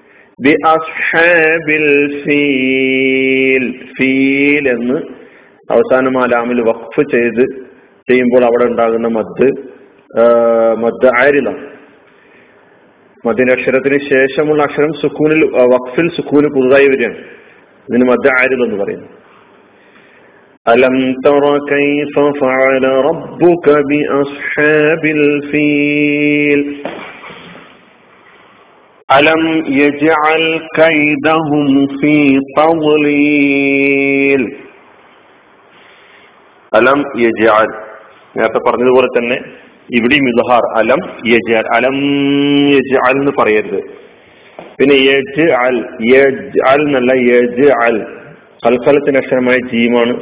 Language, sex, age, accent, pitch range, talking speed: Malayalam, male, 40-59, native, 125-145 Hz, 55 wpm